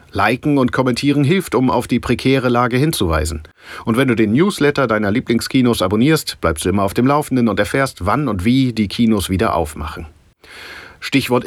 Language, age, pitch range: German, 40-59, 95-135 Hz